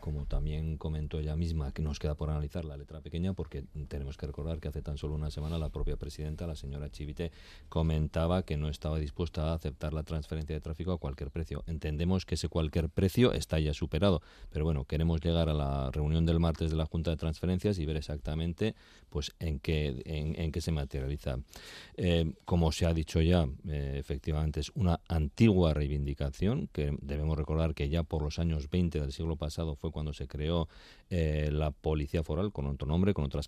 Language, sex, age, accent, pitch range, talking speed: Spanish, male, 40-59, Spanish, 75-85 Hz, 205 wpm